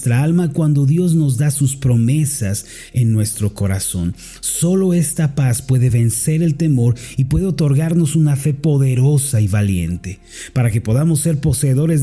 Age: 40-59